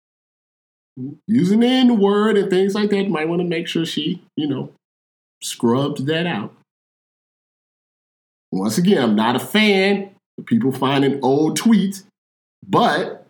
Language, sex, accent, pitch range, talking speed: English, male, American, 120-200 Hz, 140 wpm